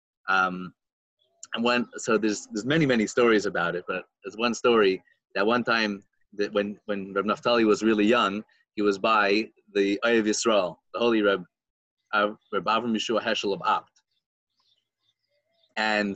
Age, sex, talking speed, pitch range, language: 30-49, male, 165 wpm, 105-135 Hz, English